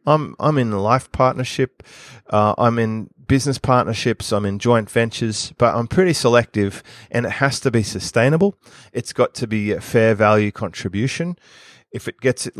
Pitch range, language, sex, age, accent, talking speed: 105-130 Hz, English, male, 30-49, Australian, 175 wpm